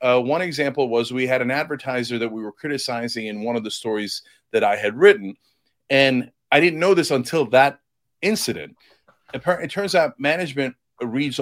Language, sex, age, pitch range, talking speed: English, male, 40-59, 120-150 Hz, 190 wpm